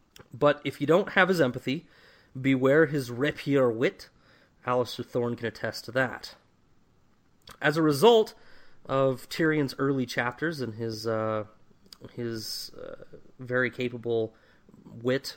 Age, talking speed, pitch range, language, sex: 30-49, 125 wpm, 115-145 Hz, English, male